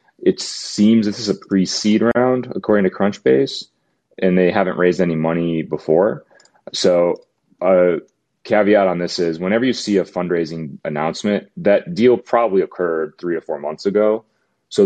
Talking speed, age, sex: 160 wpm, 30-49, male